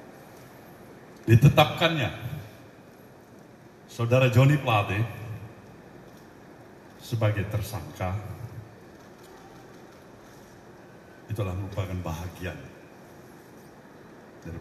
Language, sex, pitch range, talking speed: Indonesian, male, 105-140 Hz, 40 wpm